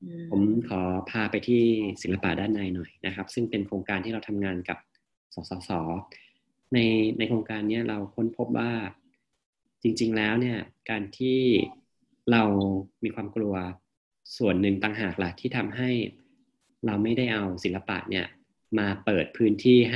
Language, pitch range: Thai, 95-115 Hz